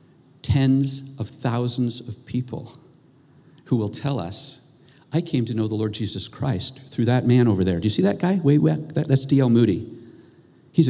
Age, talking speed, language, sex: 40-59, 170 wpm, English, male